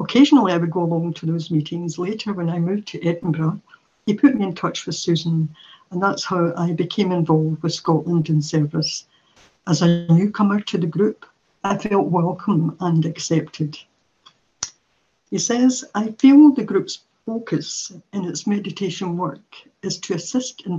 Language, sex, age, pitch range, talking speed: English, female, 60-79, 165-195 Hz, 165 wpm